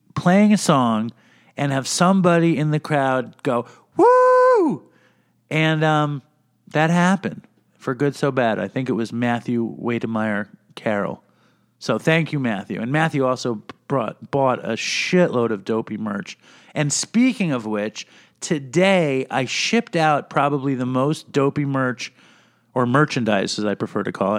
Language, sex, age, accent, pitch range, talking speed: English, male, 50-69, American, 130-185 Hz, 150 wpm